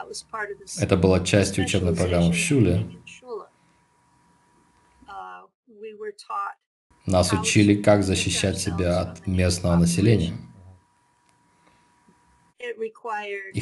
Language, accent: Russian, native